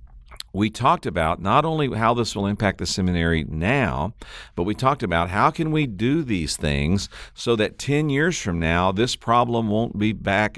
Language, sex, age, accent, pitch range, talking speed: English, male, 50-69, American, 80-110 Hz, 185 wpm